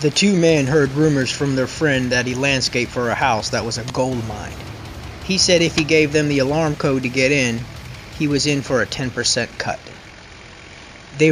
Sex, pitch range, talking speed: male, 125-150 Hz, 205 wpm